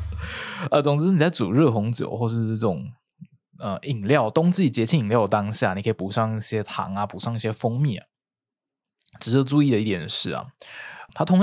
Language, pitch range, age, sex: Chinese, 100-125 Hz, 20-39, male